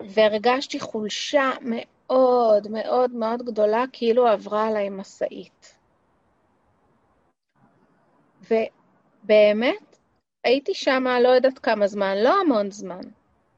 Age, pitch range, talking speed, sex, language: 30-49, 235-305 Hz, 90 wpm, female, Hebrew